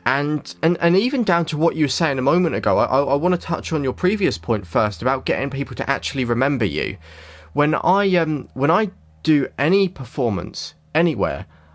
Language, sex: English, male